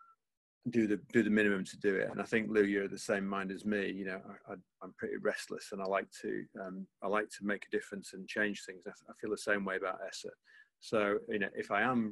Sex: male